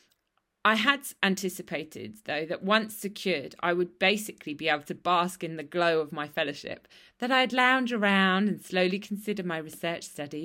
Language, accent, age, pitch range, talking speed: English, British, 20-39, 165-200 Hz, 170 wpm